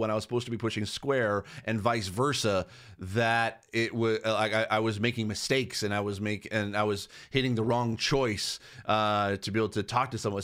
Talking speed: 220 wpm